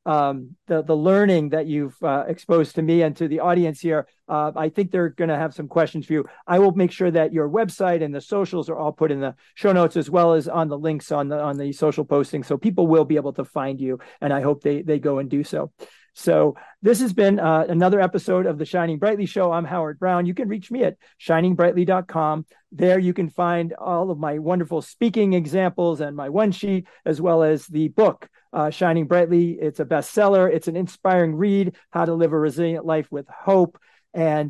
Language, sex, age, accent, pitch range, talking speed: English, male, 40-59, American, 155-180 Hz, 230 wpm